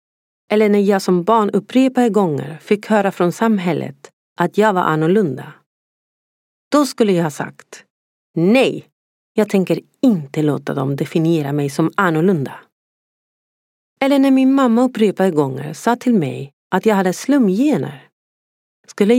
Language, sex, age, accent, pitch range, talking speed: Swedish, female, 40-59, native, 170-250 Hz, 140 wpm